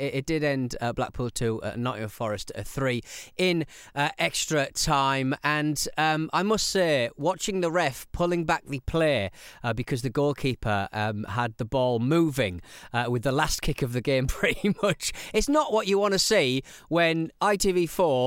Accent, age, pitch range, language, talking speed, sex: British, 30-49, 125-175 Hz, English, 155 wpm, male